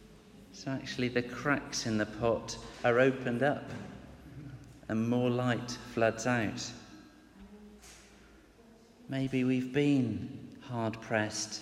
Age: 40-59